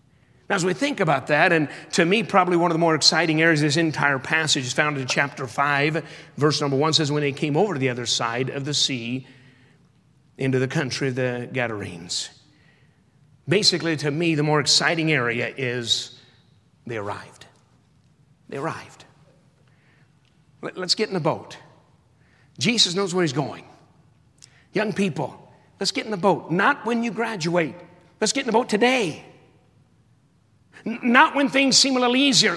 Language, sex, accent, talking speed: English, male, American, 170 wpm